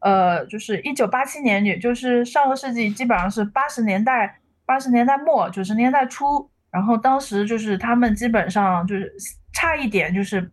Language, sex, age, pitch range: Chinese, female, 20-39, 190-235 Hz